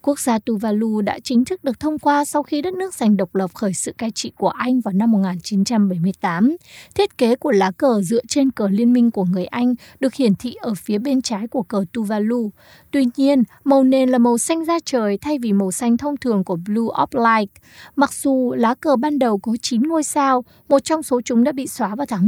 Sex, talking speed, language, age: female, 230 wpm, Vietnamese, 20-39